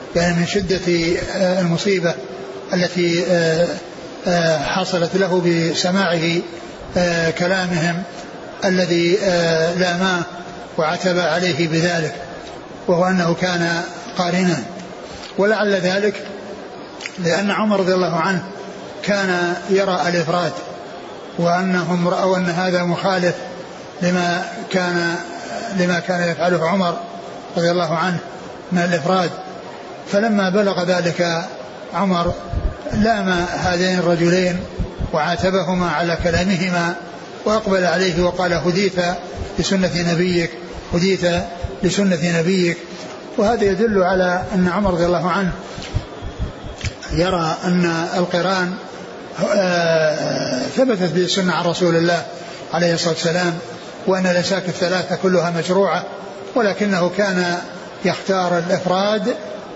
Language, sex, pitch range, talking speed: Arabic, male, 170-185 Hz, 90 wpm